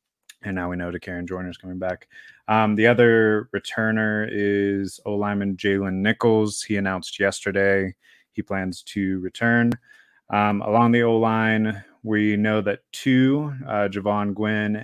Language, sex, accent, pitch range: English, male, American, 95-110 Hz